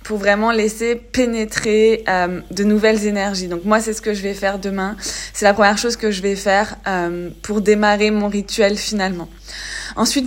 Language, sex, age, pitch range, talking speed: French, female, 20-39, 205-240 Hz, 185 wpm